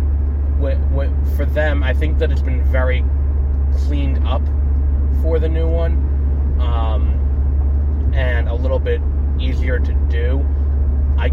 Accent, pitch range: American, 75-85 Hz